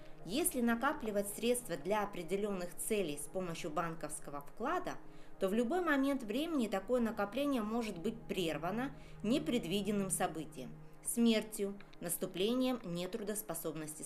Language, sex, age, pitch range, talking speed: Russian, female, 20-39, 170-235 Hz, 105 wpm